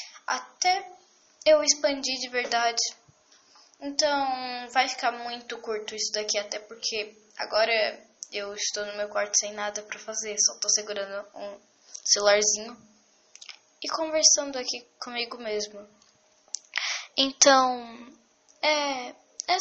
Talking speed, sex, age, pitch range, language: 115 wpm, female, 10-29, 210-285 Hz, English